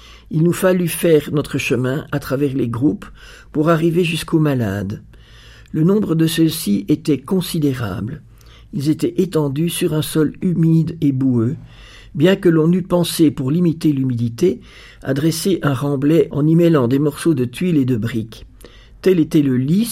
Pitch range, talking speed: 130-165 Hz, 170 wpm